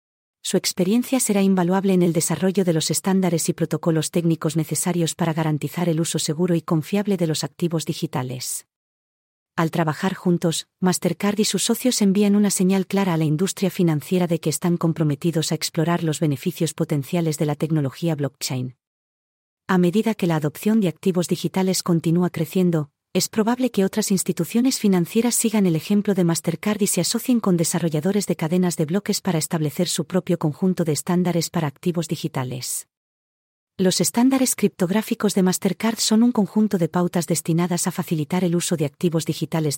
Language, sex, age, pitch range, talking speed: English, female, 40-59, 165-195 Hz, 165 wpm